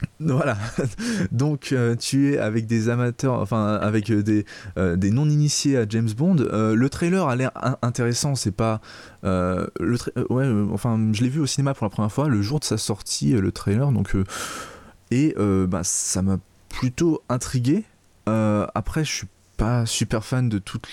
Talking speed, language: 185 wpm, French